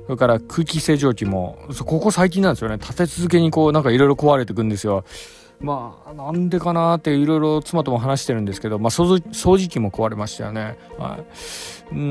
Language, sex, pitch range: Japanese, male, 115-160 Hz